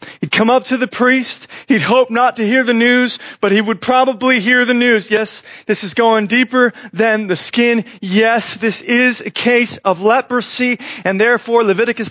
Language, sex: English, male